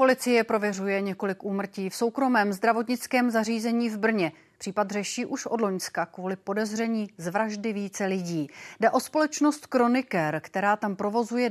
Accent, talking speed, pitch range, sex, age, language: native, 145 wpm, 185-240 Hz, female, 40-59, Czech